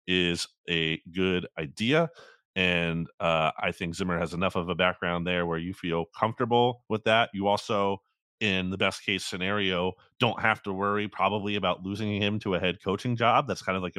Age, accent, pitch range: 30-49, American, 95-125 Hz